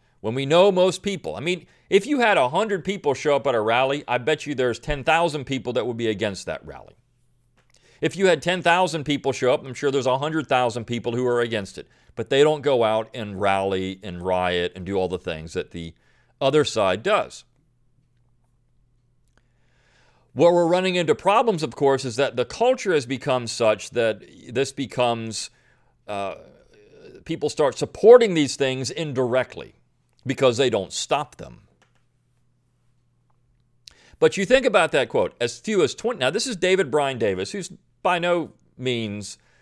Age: 40-59